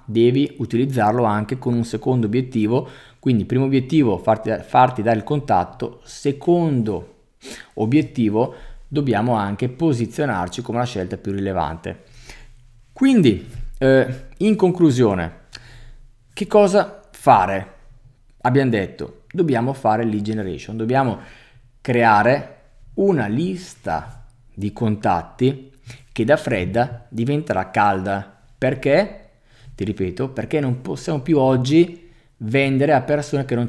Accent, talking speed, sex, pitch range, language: native, 110 wpm, male, 110-135 Hz, Italian